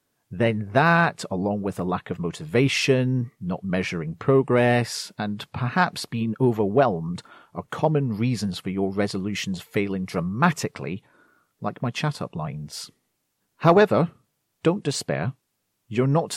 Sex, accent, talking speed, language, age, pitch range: male, British, 115 wpm, English, 40-59, 100-155 Hz